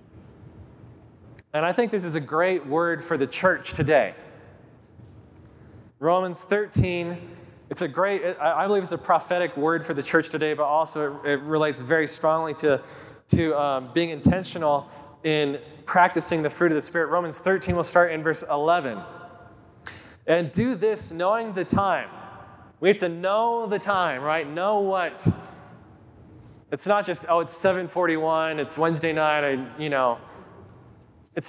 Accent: American